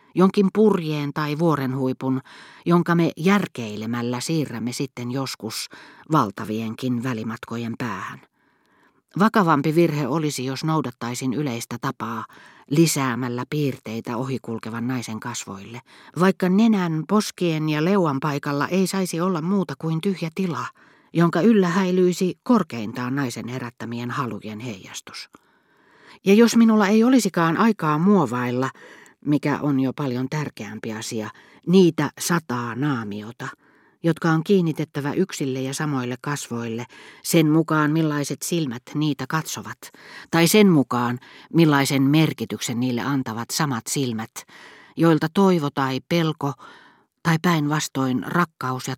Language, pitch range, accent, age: Finnish, 125-170 Hz, native, 40-59